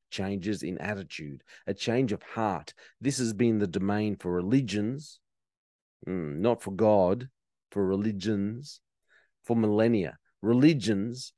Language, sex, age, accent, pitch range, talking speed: English, male, 40-59, Australian, 95-120 Hz, 120 wpm